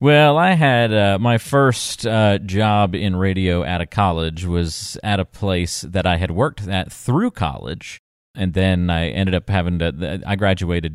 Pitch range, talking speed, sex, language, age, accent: 85-100 Hz, 180 wpm, male, English, 40-59, American